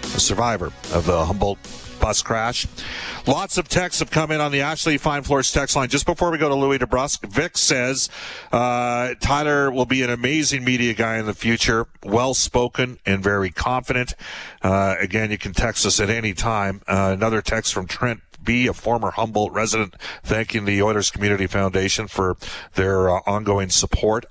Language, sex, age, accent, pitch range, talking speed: English, male, 50-69, American, 95-120 Hz, 180 wpm